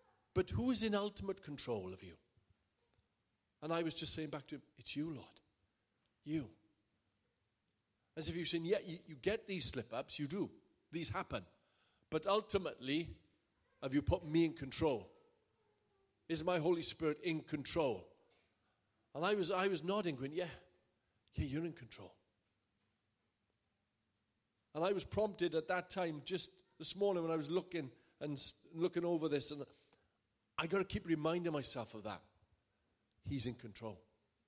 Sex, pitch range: male, 110-180 Hz